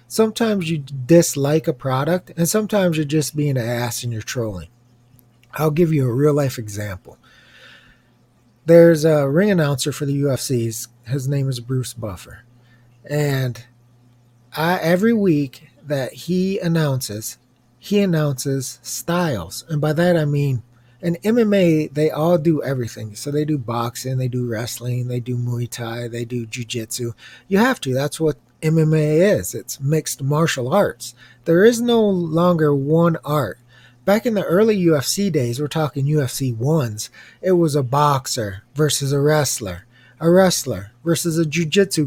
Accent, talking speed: American, 155 wpm